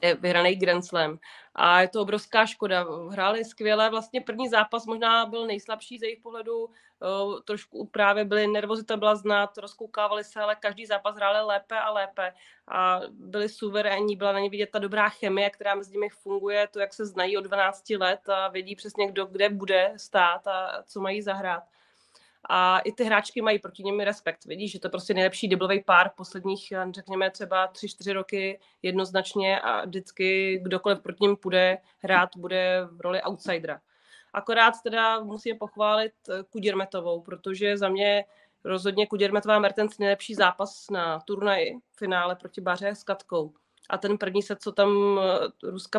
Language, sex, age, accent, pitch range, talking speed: Czech, female, 30-49, native, 190-210 Hz, 160 wpm